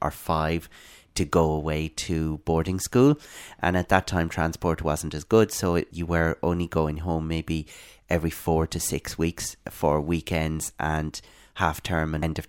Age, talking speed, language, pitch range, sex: 30-49, 175 wpm, English, 80-90 Hz, male